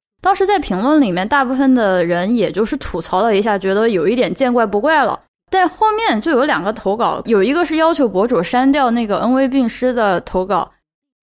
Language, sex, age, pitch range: Chinese, female, 20-39, 195-285 Hz